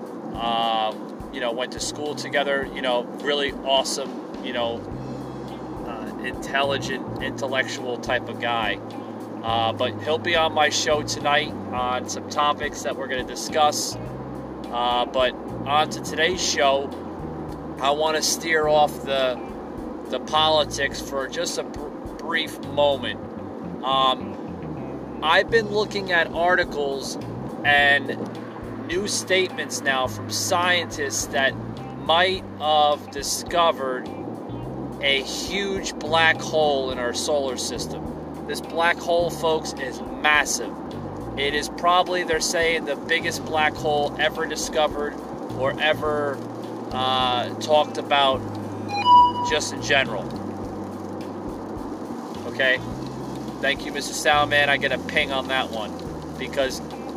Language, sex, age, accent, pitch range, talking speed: English, male, 30-49, American, 125-155 Hz, 125 wpm